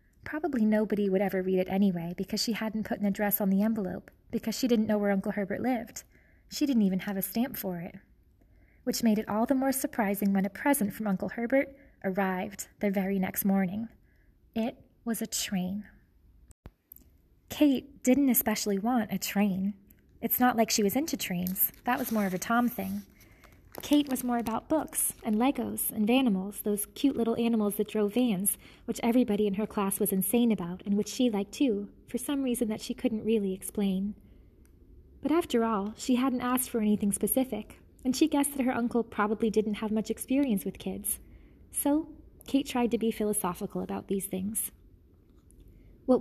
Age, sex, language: 20-39, female, English